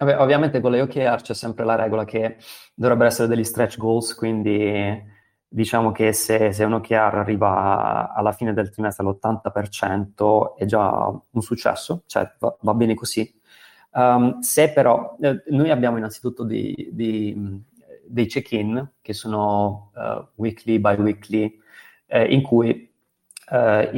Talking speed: 140 wpm